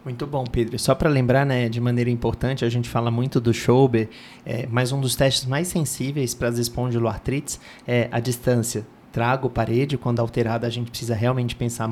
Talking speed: 190 wpm